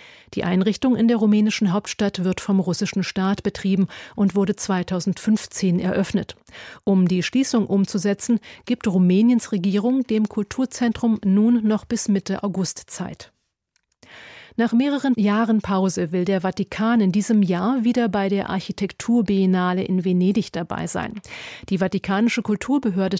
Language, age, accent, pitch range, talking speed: German, 40-59, German, 190-220 Hz, 130 wpm